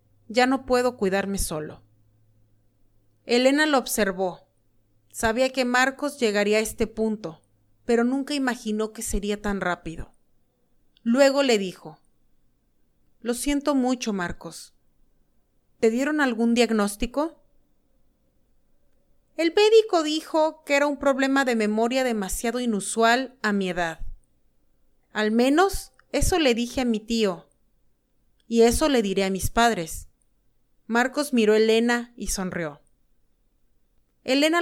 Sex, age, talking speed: female, 30-49, 120 wpm